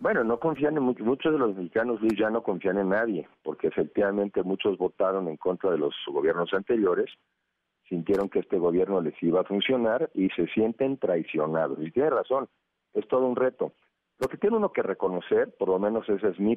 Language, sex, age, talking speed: Spanish, male, 50-69, 200 wpm